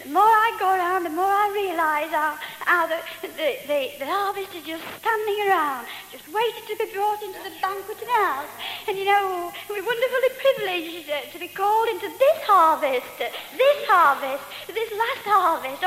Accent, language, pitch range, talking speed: British, English, 330-435 Hz, 165 wpm